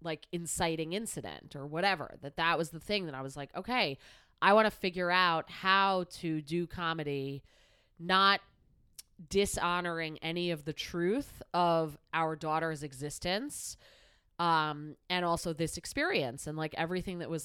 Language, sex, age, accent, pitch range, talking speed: English, female, 30-49, American, 155-185 Hz, 150 wpm